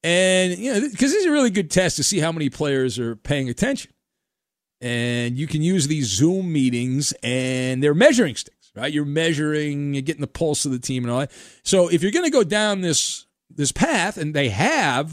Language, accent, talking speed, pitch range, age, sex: English, American, 220 wpm, 150-220 Hz, 40-59, male